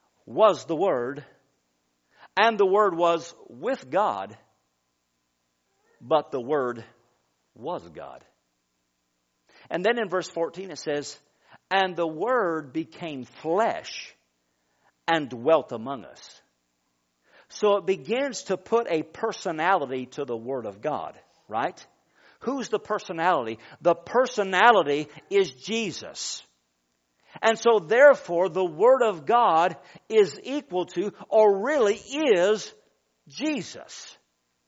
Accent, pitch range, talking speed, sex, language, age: American, 140-205 Hz, 110 wpm, male, English, 50-69